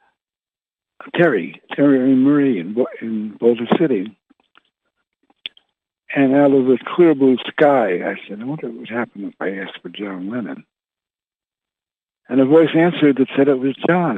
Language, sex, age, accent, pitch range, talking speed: English, male, 60-79, American, 130-200 Hz, 160 wpm